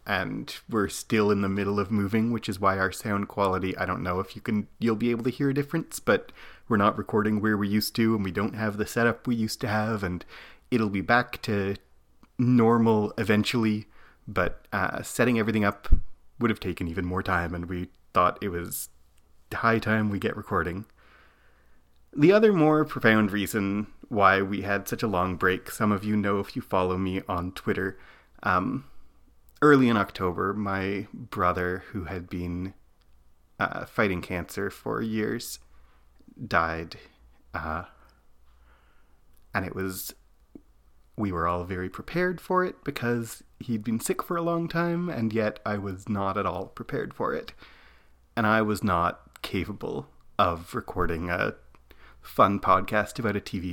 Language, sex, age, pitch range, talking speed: English, male, 30-49, 85-110 Hz, 170 wpm